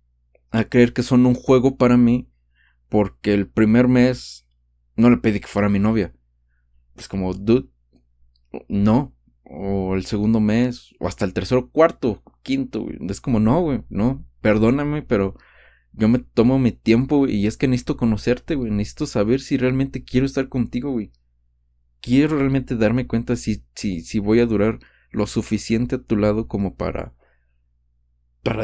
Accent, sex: Mexican, male